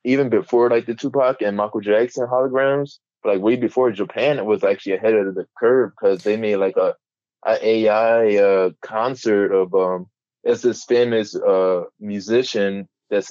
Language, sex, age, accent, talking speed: English, male, 20-39, American, 165 wpm